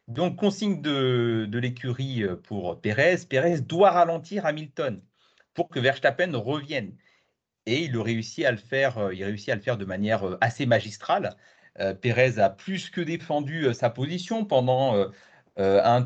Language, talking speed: French, 135 wpm